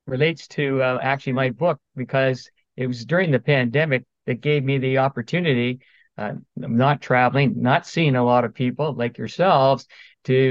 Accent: American